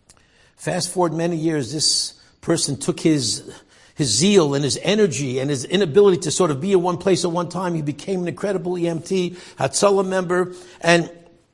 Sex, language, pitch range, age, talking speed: male, English, 140-180 Hz, 60-79, 175 wpm